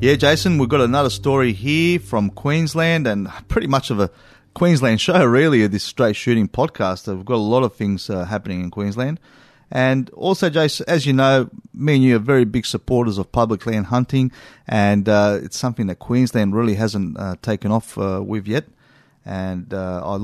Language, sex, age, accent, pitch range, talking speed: English, male, 30-49, Australian, 100-130 Hz, 195 wpm